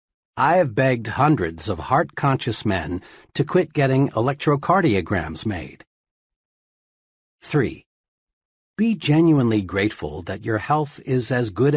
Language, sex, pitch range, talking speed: English, male, 110-160 Hz, 110 wpm